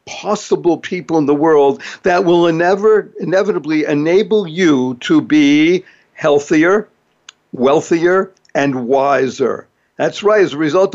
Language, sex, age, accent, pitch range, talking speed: English, male, 60-79, American, 150-190 Hz, 115 wpm